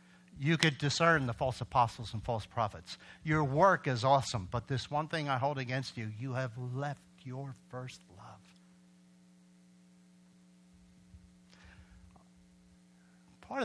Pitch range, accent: 90-145 Hz, American